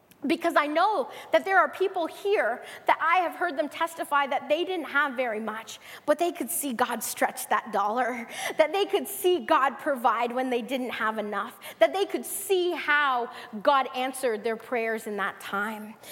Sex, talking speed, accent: female, 190 wpm, American